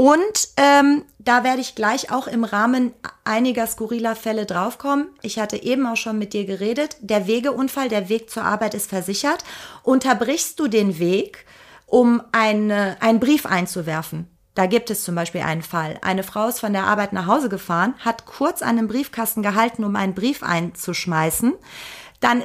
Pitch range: 205-255 Hz